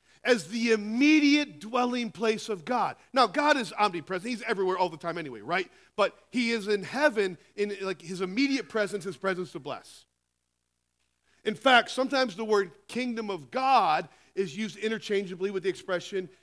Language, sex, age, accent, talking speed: English, male, 40-59, American, 170 wpm